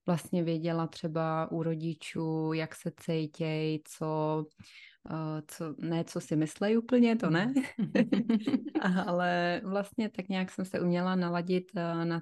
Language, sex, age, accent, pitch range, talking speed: Czech, female, 20-39, native, 160-175 Hz, 130 wpm